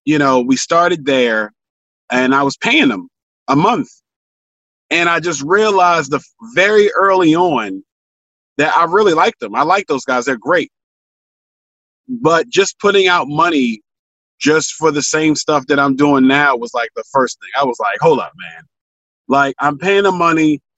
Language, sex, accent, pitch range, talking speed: English, male, American, 140-185 Hz, 175 wpm